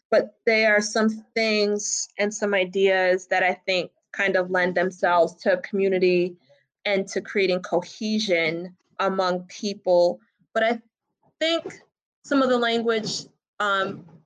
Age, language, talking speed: 20-39, English, 135 wpm